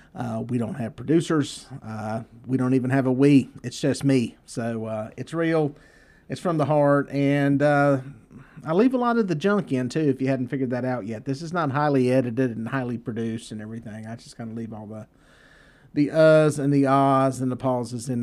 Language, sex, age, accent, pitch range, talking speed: English, male, 40-59, American, 130-160 Hz, 220 wpm